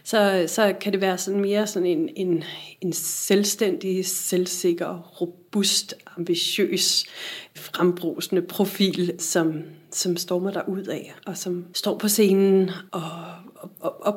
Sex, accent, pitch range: female, native, 180-205 Hz